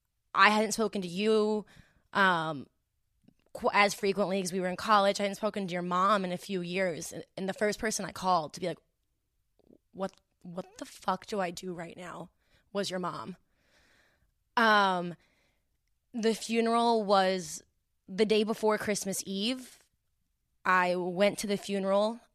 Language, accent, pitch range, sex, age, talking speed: English, American, 185-215 Hz, female, 20-39, 160 wpm